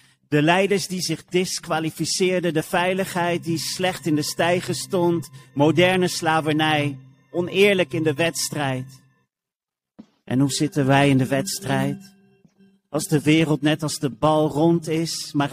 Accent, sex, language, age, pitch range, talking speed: Dutch, male, Dutch, 40-59, 140-170 Hz, 140 wpm